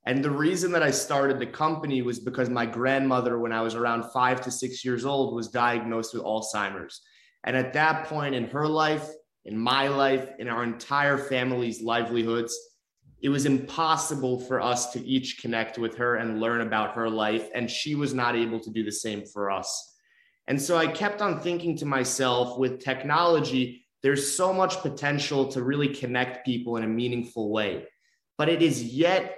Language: English